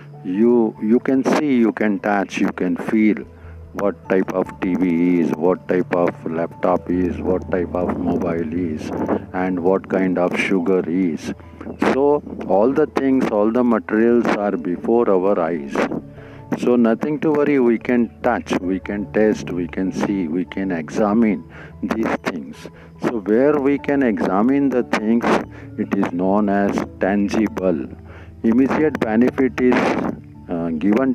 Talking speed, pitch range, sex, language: 150 wpm, 90-125 Hz, male, Hindi